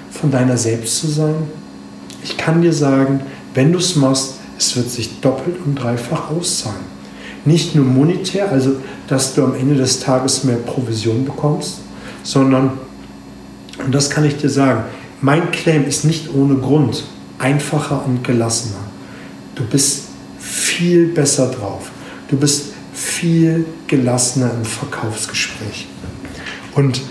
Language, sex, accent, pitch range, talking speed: German, male, German, 120-150 Hz, 135 wpm